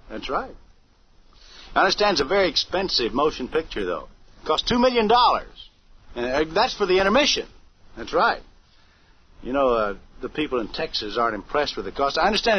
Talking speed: 165 wpm